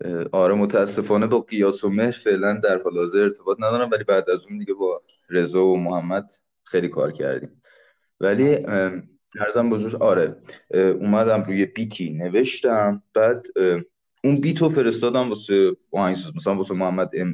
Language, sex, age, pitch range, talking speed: Persian, male, 20-39, 100-140 Hz, 145 wpm